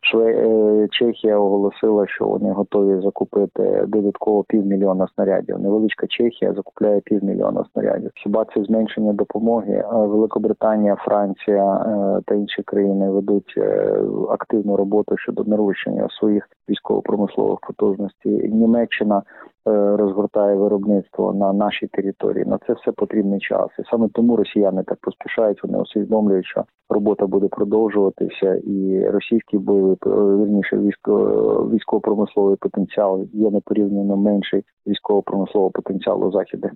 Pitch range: 100-110 Hz